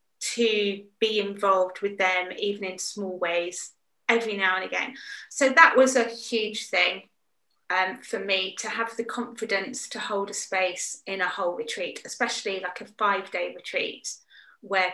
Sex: female